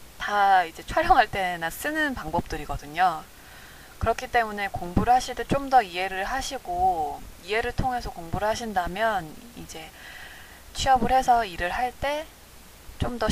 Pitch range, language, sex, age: 175-255 Hz, Korean, female, 20-39